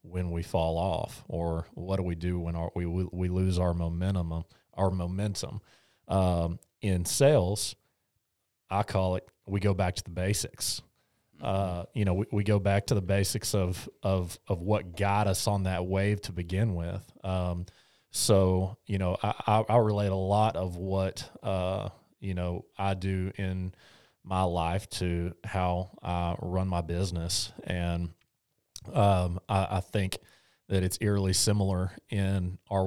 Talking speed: 165 wpm